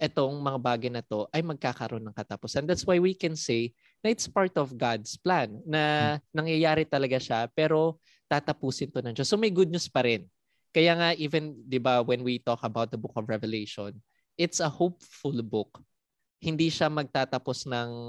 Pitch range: 120-165 Hz